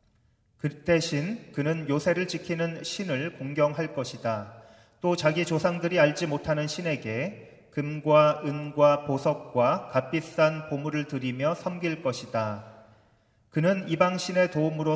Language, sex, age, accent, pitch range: Korean, male, 30-49, native, 130-170 Hz